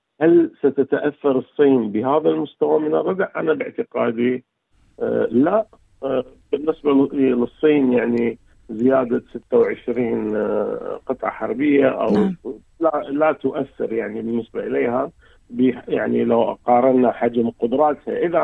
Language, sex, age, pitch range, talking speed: Arabic, male, 50-69, 120-150 Hz, 95 wpm